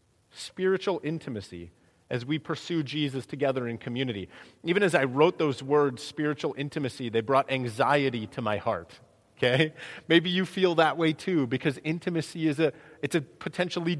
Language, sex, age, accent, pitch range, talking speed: English, male, 30-49, American, 135-170 Hz, 160 wpm